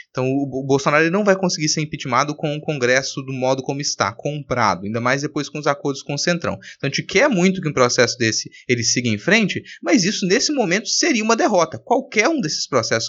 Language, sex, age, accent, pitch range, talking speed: Portuguese, male, 20-39, Brazilian, 120-175 Hz, 225 wpm